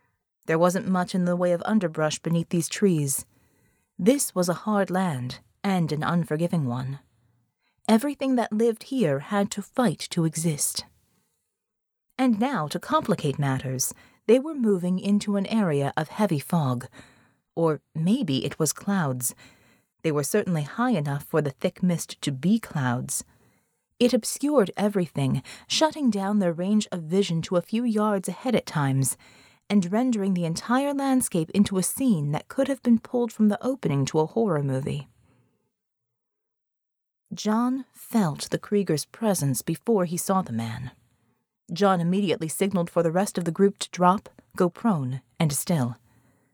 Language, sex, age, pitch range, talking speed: English, female, 30-49, 140-220 Hz, 155 wpm